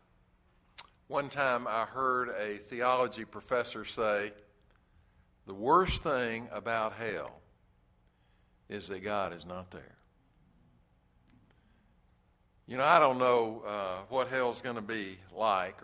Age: 60-79